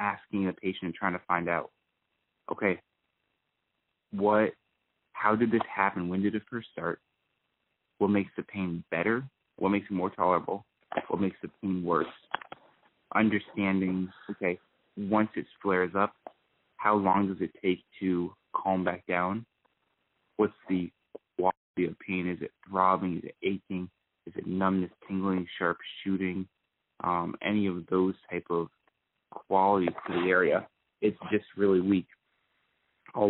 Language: English